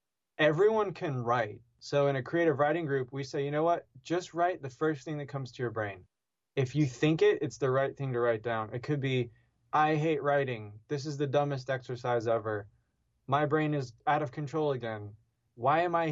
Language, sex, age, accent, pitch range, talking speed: English, male, 20-39, American, 120-145 Hz, 210 wpm